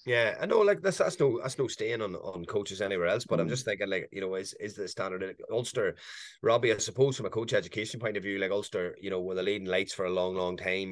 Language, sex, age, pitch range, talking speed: English, male, 30-49, 95-105 Hz, 285 wpm